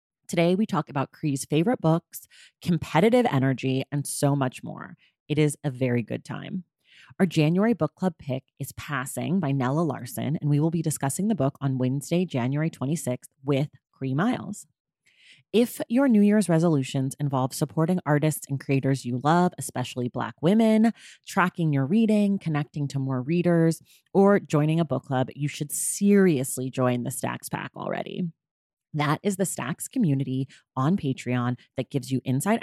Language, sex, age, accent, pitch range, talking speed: English, female, 30-49, American, 135-180 Hz, 165 wpm